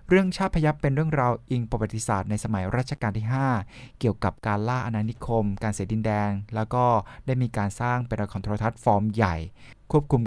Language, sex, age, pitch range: Thai, male, 20-39, 105-125 Hz